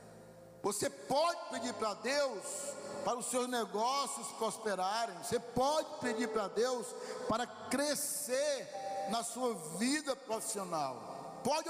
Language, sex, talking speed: Portuguese, male, 115 wpm